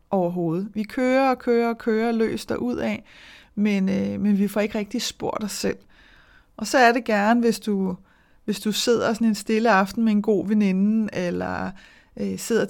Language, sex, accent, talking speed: Danish, female, native, 170 wpm